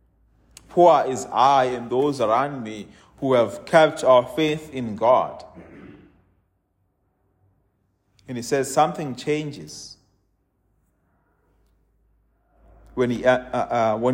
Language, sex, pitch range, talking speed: English, male, 100-145 Hz, 85 wpm